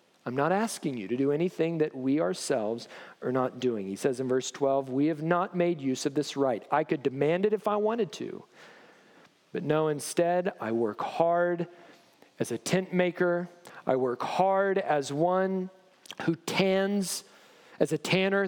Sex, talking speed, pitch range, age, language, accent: male, 175 wpm, 155-205 Hz, 40-59, English, American